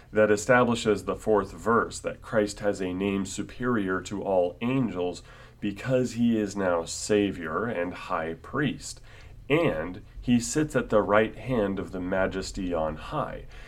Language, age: English, 30-49